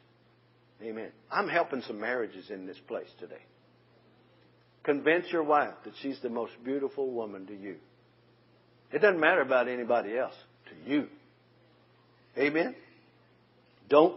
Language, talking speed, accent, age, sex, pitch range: English, 125 wpm, American, 60-79, male, 130-180 Hz